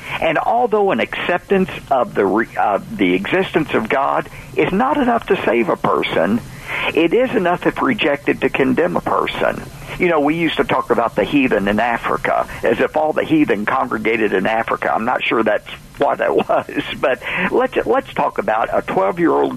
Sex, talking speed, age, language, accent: male, 185 wpm, 50-69, English, American